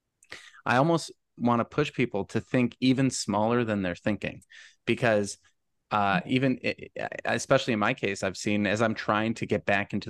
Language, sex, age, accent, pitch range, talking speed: English, male, 20-39, American, 100-130 Hz, 180 wpm